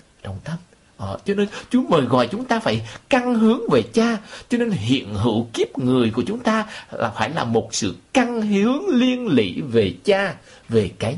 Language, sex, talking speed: Vietnamese, male, 200 wpm